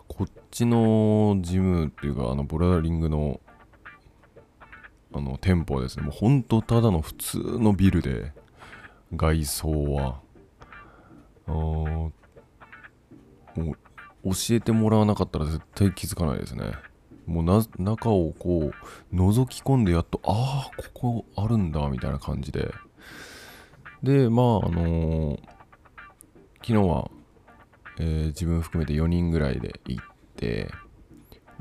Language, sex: Japanese, male